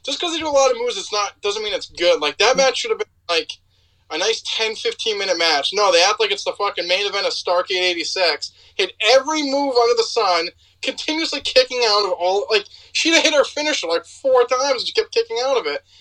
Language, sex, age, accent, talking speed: English, male, 20-39, American, 245 wpm